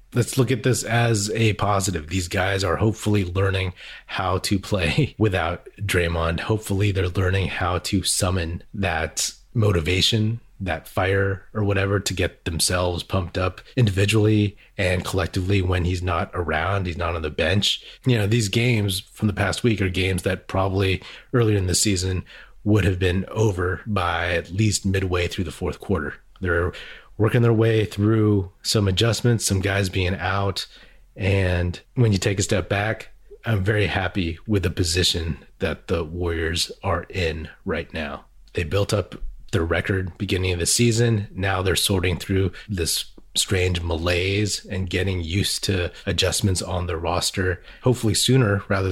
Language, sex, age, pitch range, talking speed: English, male, 30-49, 90-105 Hz, 160 wpm